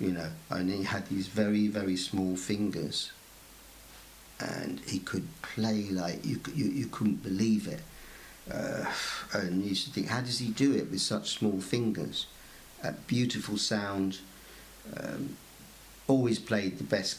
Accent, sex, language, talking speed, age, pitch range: British, male, English, 155 wpm, 50-69, 95-110 Hz